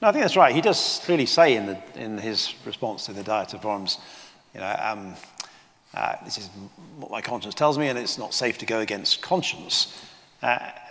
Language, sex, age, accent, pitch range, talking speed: English, male, 40-59, British, 120-160 Hz, 215 wpm